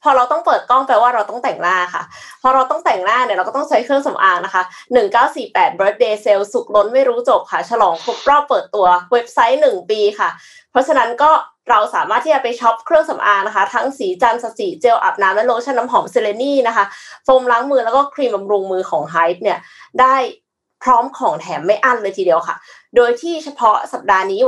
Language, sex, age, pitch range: Thai, female, 20-39, 225-315 Hz